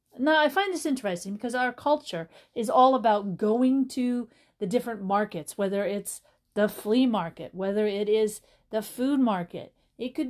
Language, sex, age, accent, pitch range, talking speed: English, female, 40-59, American, 200-260 Hz, 170 wpm